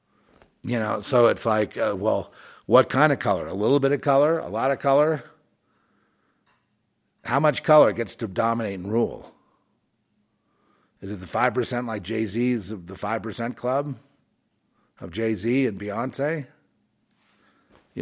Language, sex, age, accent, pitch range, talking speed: English, male, 50-69, American, 105-130 Hz, 145 wpm